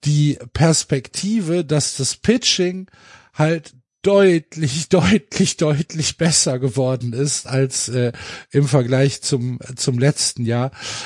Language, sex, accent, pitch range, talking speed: German, male, German, 135-170 Hz, 115 wpm